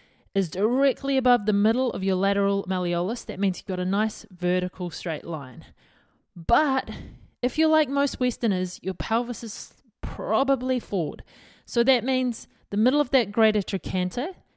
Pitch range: 185-250 Hz